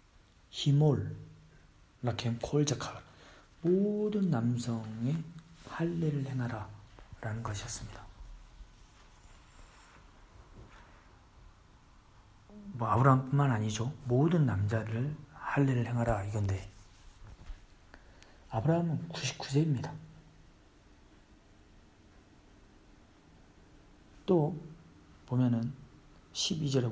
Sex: male